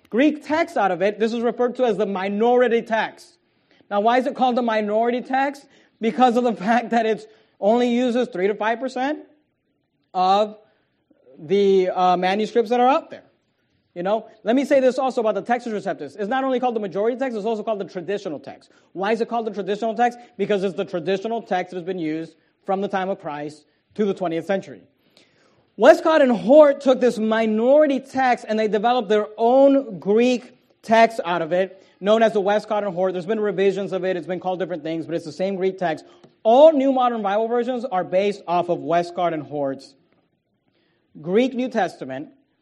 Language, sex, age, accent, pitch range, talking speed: English, male, 30-49, American, 190-245 Hz, 205 wpm